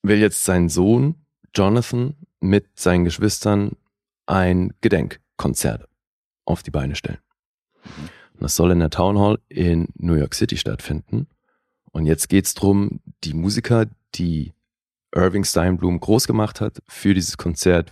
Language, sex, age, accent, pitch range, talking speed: German, male, 30-49, German, 80-100 Hz, 140 wpm